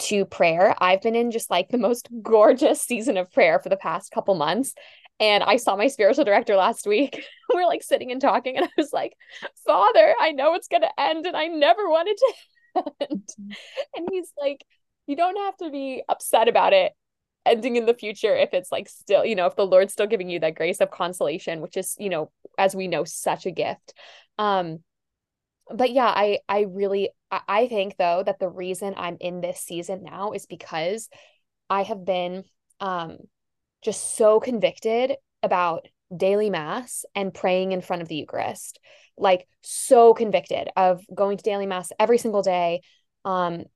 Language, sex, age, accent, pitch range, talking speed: English, female, 20-39, American, 185-265 Hz, 185 wpm